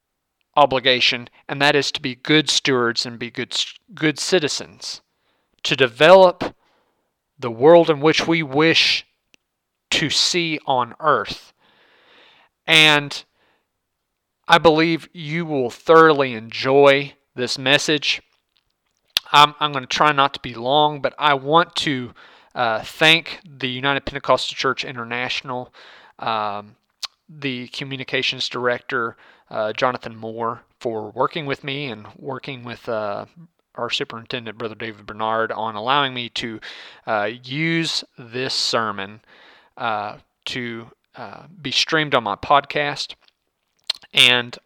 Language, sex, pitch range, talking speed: English, male, 120-150 Hz, 120 wpm